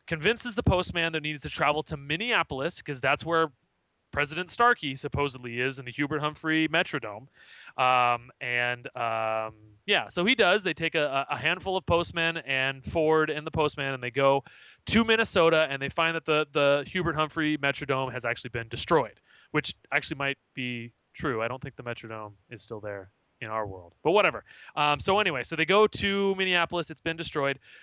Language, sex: English, male